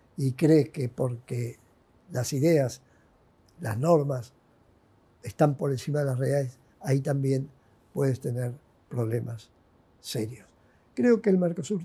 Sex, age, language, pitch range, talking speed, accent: male, 60-79, Spanish, 120-165 Hz, 120 wpm, Argentinian